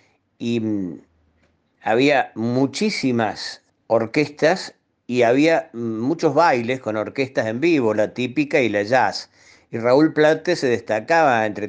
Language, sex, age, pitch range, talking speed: Spanish, male, 50-69, 105-135 Hz, 120 wpm